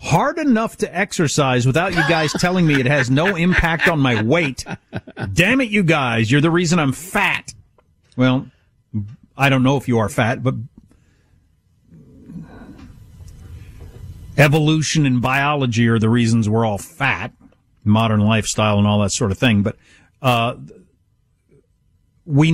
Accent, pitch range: American, 115-160 Hz